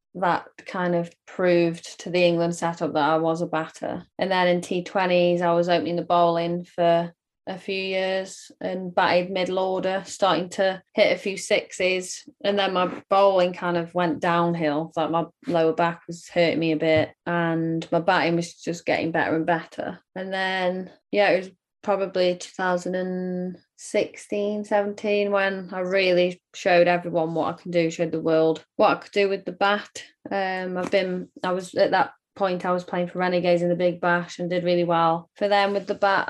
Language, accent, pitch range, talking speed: English, British, 170-190 Hz, 190 wpm